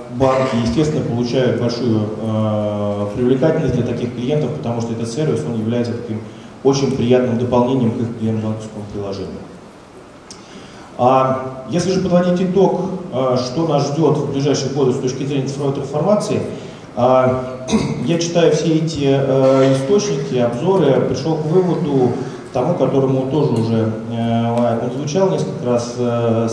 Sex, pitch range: male, 120-150 Hz